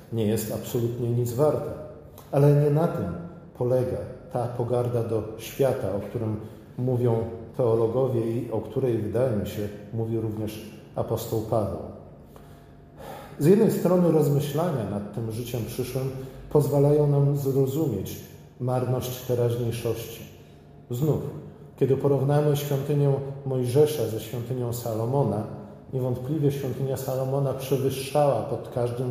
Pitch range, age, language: 115-140 Hz, 40-59, Polish